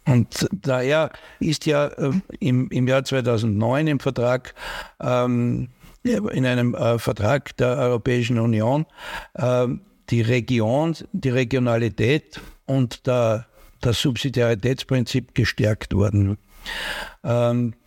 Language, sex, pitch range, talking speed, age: German, male, 115-140 Hz, 100 wpm, 60-79